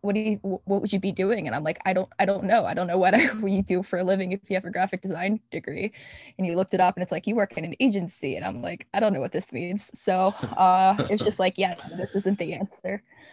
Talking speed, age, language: 305 wpm, 10-29, English